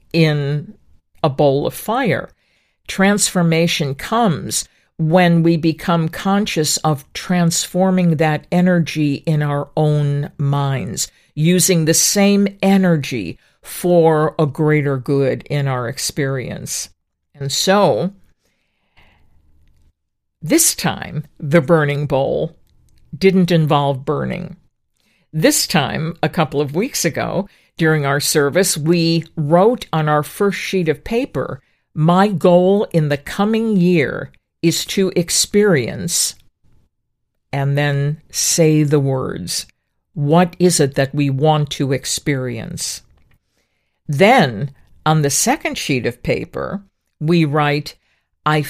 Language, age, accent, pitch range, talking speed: English, 50-69, American, 145-180 Hz, 110 wpm